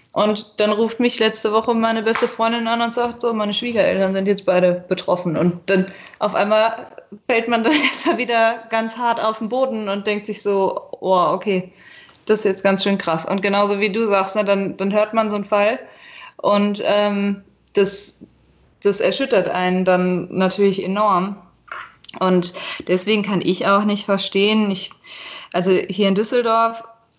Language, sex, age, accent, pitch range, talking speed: German, female, 20-39, German, 185-220 Hz, 170 wpm